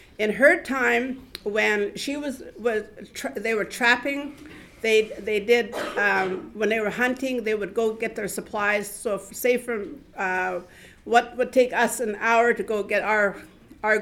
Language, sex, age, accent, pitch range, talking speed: English, female, 60-79, American, 205-245 Hz, 175 wpm